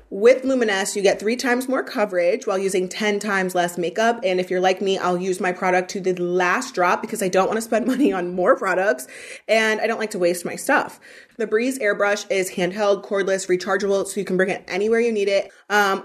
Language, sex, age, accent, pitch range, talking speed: English, female, 30-49, American, 185-230 Hz, 230 wpm